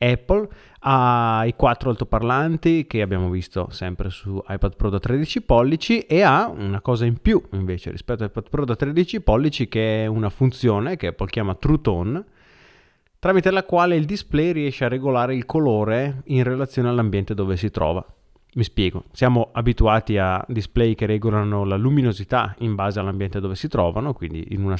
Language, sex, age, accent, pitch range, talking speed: Italian, male, 30-49, native, 100-140 Hz, 175 wpm